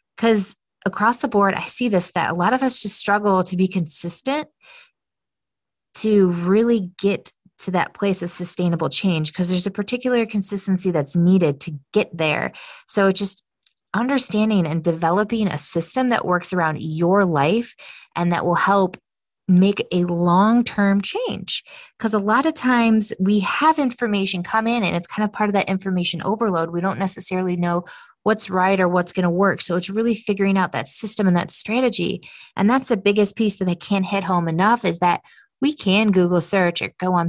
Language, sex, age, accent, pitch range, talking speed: English, female, 20-39, American, 175-215 Hz, 190 wpm